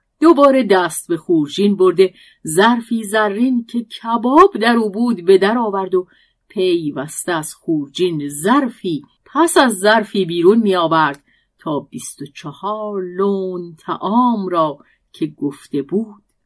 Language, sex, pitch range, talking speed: Persian, female, 170-245 Hz, 130 wpm